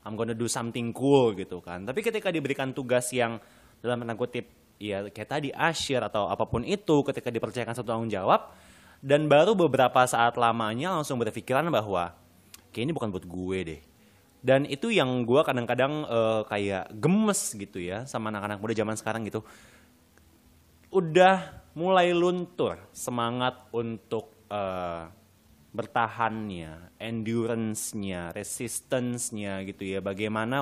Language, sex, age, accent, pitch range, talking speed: Indonesian, male, 20-39, native, 100-135 Hz, 135 wpm